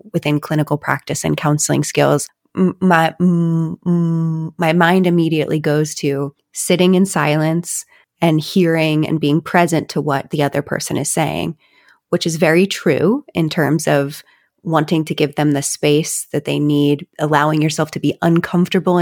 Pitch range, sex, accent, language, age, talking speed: 155-180 Hz, female, American, English, 30-49, 150 wpm